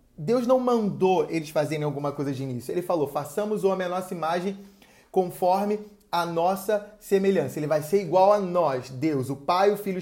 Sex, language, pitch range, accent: male, Portuguese, 155-195 Hz, Brazilian